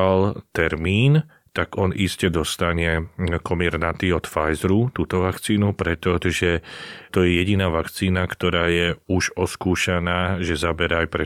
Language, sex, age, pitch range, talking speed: Slovak, male, 40-59, 85-95 Hz, 125 wpm